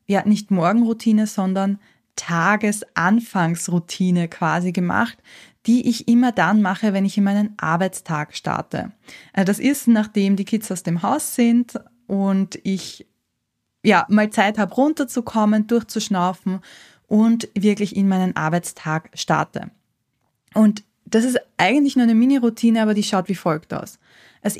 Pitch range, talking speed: 180-220 Hz, 135 wpm